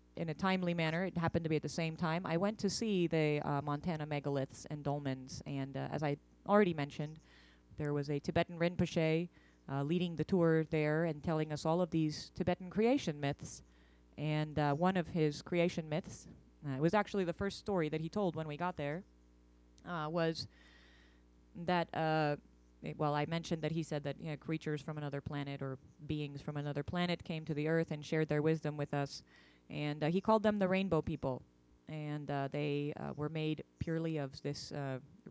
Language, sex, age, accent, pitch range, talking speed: English, female, 30-49, American, 140-165 Hz, 195 wpm